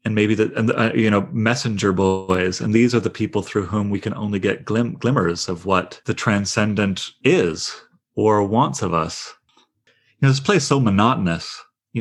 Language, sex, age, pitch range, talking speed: English, male, 30-49, 95-120 Hz, 200 wpm